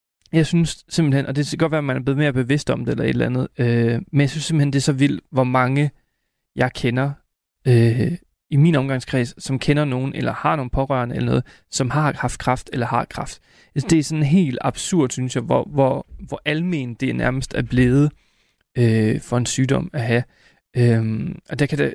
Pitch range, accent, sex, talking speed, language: 125-145 Hz, native, male, 220 wpm, Danish